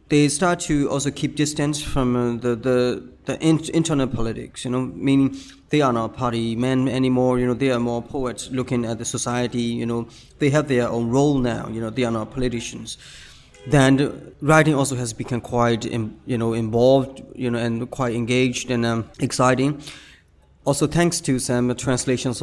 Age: 20-39